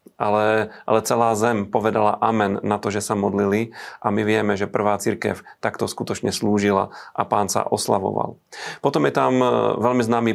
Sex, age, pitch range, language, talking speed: male, 40-59, 105-110 Hz, Slovak, 170 wpm